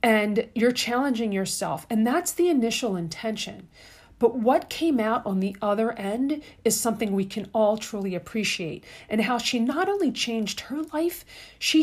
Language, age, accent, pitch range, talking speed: English, 40-59, American, 190-245 Hz, 165 wpm